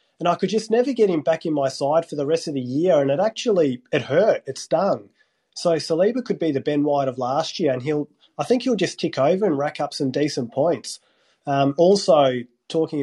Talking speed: 235 wpm